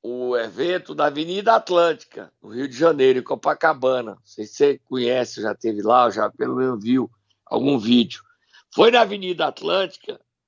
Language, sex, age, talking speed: Portuguese, male, 60-79, 170 wpm